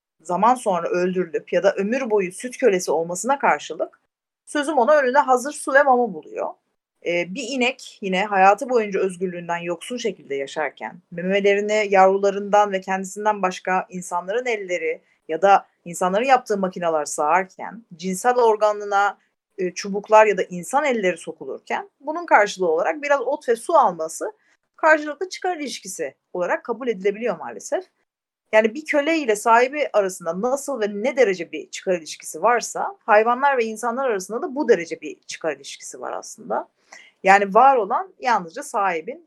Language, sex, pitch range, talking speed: Turkish, female, 190-290 Hz, 145 wpm